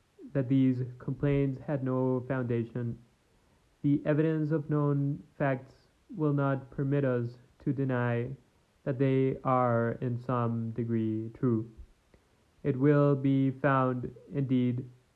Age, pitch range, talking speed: 20-39, 120-140 Hz, 115 wpm